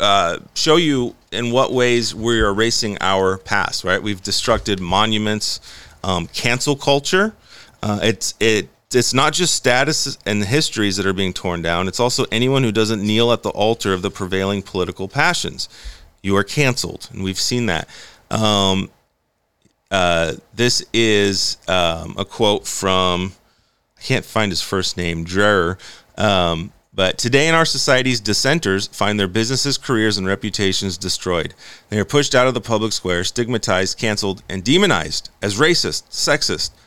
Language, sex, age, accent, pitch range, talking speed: English, male, 30-49, American, 95-125 Hz, 160 wpm